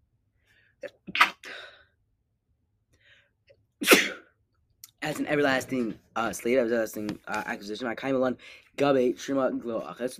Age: 10-29